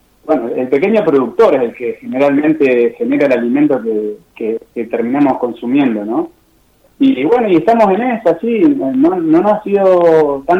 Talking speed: 175 wpm